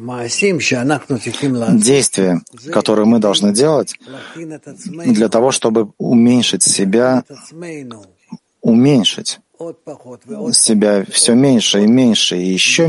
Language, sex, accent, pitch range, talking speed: Ukrainian, male, native, 110-150 Hz, 85 wpm